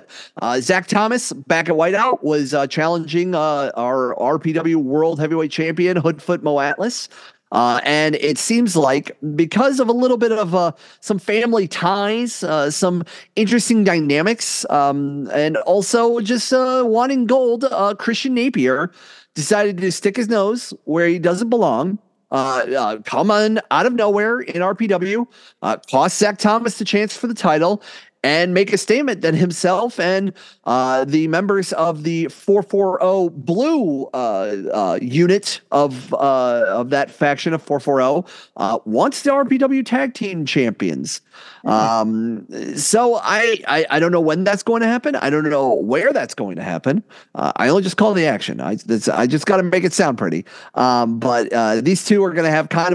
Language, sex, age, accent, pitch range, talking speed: English, male, 30-49, American, 145-215 Hz, 170 wpm